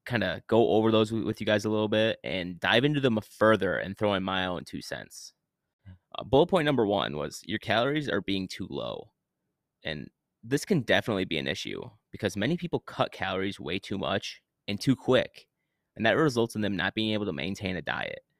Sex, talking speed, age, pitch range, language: male, 210 wpm, 20-39, 95-110 Hz, English